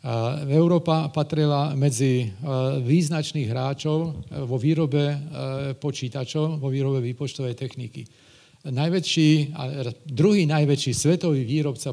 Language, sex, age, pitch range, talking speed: Slovak, male, 40-59, 130-150 Hz, 85 wpm